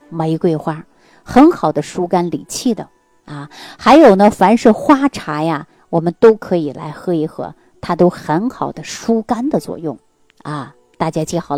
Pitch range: 160-230 Hz